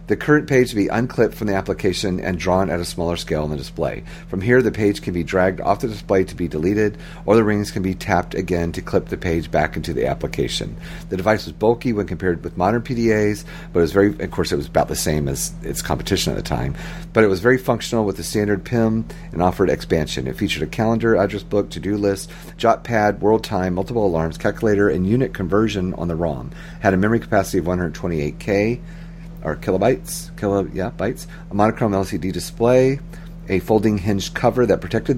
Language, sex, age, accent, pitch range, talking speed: English, male, 40-59, American, 90-120 Hz, 215 wpm